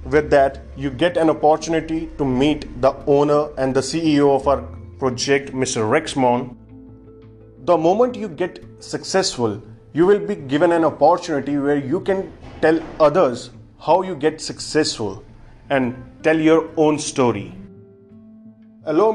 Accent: native